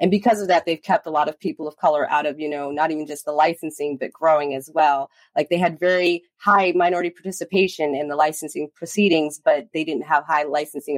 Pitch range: 150-185 Hz